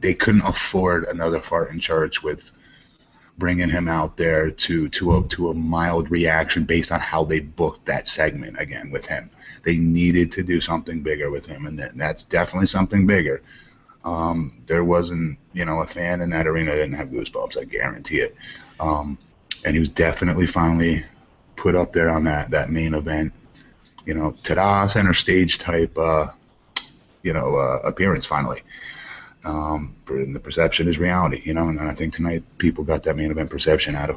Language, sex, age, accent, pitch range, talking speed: English, male, 30-49, American, 80-95 Hz, 190 wpm